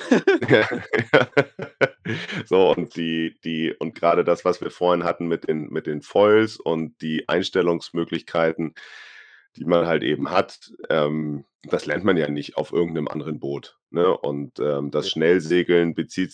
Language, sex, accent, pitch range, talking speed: German, male, German, 75-85 Hz, 145 wpm